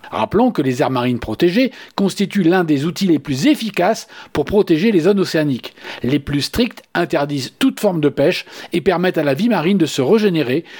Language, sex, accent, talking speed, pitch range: French, male, French, 195 wpm, 150-230 Hz